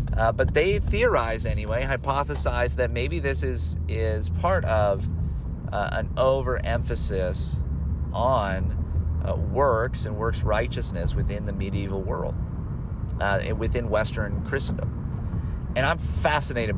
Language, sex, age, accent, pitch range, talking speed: English, male, 30-49, American, 85-115 Hz, 120 wpm